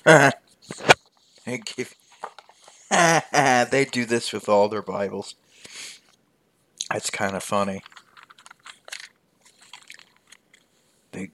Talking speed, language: 75 wpm, English